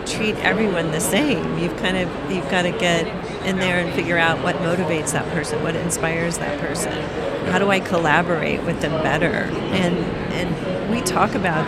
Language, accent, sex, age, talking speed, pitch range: English, American, female, 40-59, 185 wpm, 170-195 Hz